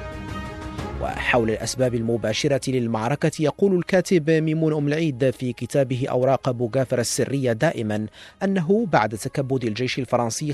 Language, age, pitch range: Arabic, 40-59, 120-150 Hz